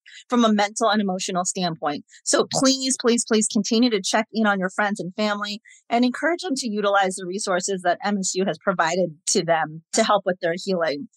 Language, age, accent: English, 30-49, American